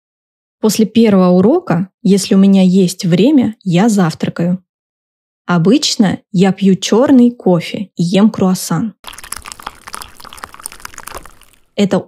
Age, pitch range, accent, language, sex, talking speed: 20-39, 180-220 Hz, native, Russian, female, 95 wpm